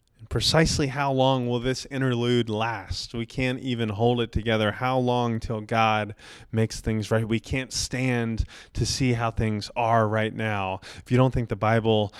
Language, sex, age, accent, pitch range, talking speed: English, male, 20-39, American, 100-120 Hz, 175 wpm